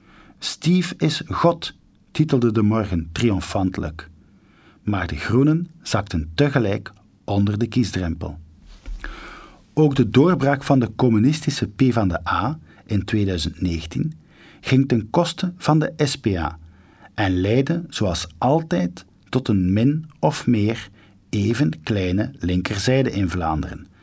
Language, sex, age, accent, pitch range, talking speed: Dutch, male, 50-69, Dutch, 95-135 Hz, 110 wpm